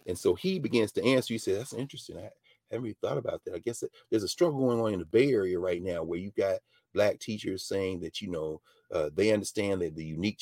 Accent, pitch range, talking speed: American, 100-135 Hz, 260 wpm